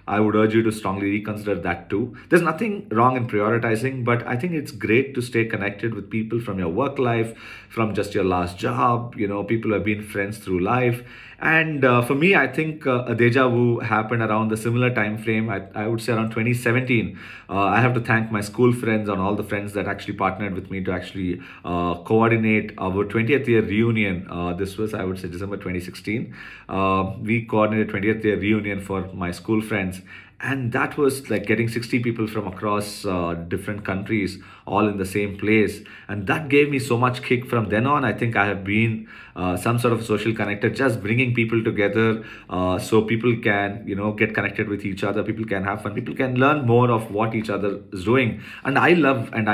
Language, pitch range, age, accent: English, 100-115 Hz, 40-59, Indian